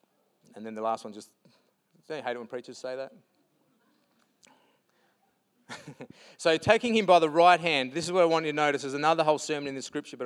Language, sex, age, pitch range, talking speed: English, male, 30-49, 155-210 Hz, 210 wpm